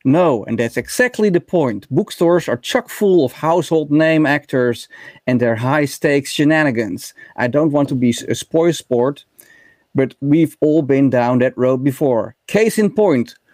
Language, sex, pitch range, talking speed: Dutch, male, 125-170 Hz, 165 wpm